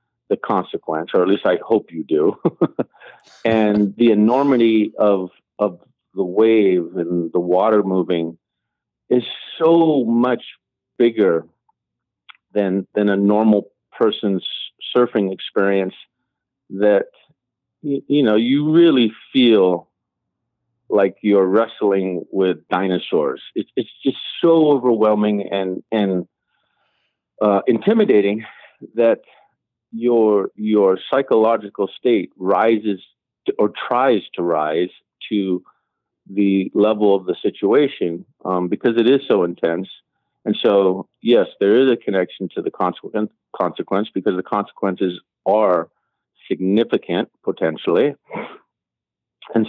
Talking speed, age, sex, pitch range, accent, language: 110 wpm, 50-69, male, 95-115 Hz, American, English